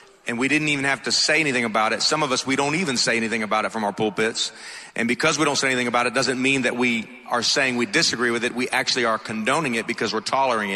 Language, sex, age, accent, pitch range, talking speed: English, male, 40-59, American, 120-155 Hz, 270 wpm